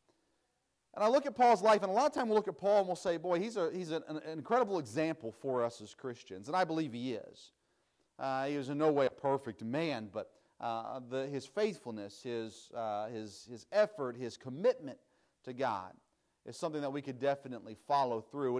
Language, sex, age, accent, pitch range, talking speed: English, male, 40-59, American, 125-175 Hz, 215 wpm